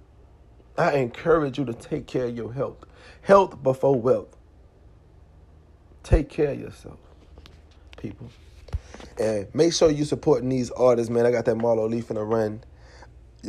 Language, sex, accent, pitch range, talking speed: English, male, American, 100-135 Hz, 150 wpm